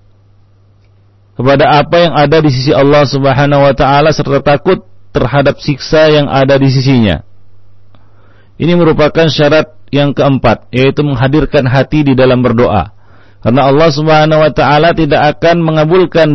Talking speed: 130 wpm